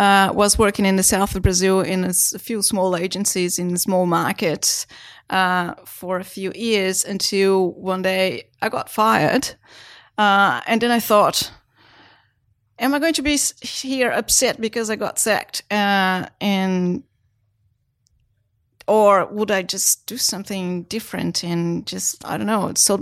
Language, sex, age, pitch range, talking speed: English, female, 30-49, 175-205 Hz, 155 wpm